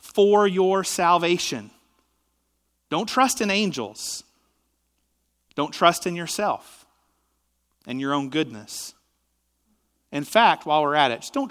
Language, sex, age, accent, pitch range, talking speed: English, male, 40-59, American, 125-165 Hz, 120 wpm